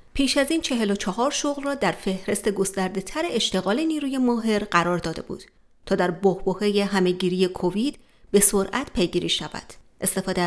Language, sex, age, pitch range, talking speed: Persian, female, 30-49, 190-250 Hz, 160 wpm